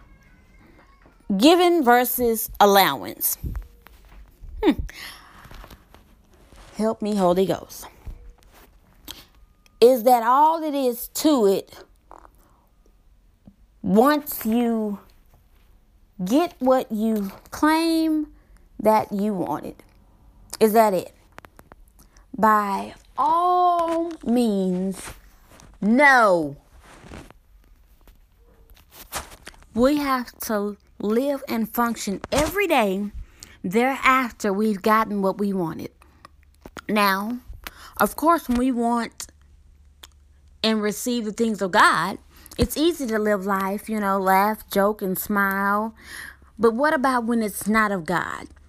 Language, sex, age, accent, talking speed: English, female, 20-39, American, 95 wpm